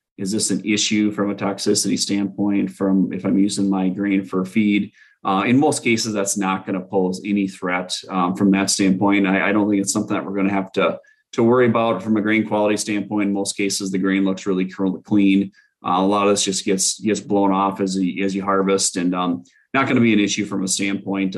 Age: 30-49